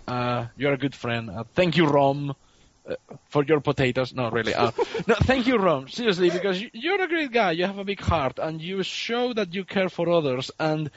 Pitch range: 125-185 Hz